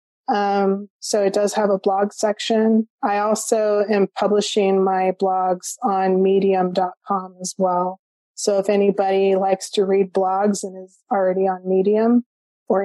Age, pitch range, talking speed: 20-39, 190-220 Hz, 145 wpm